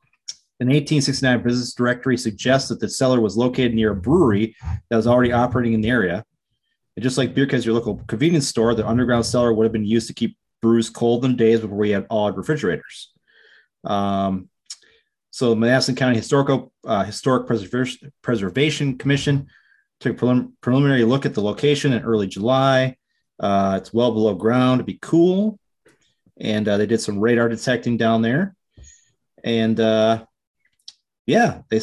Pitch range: 110-130 Hz